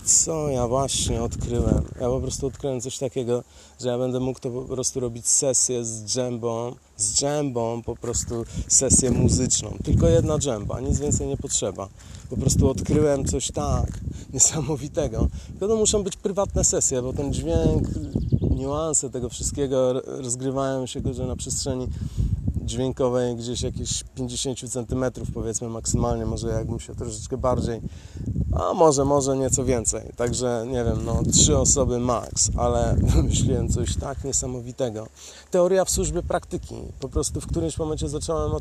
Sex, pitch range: male, 115-135 Hz